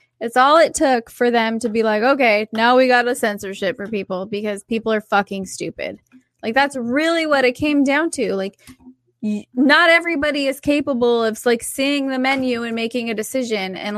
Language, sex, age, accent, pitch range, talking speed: English, female, 20-39, American, 215-255 Hz, 195 wpm